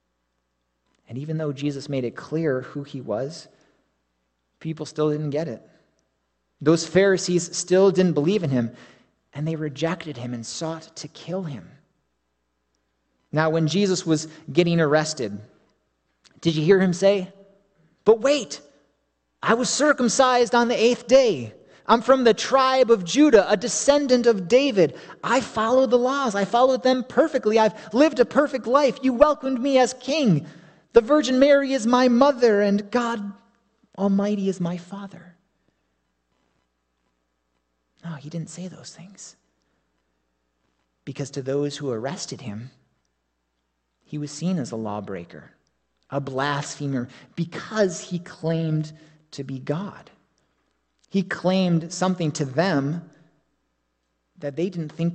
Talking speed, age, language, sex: 135 wpm, 30-49, English, male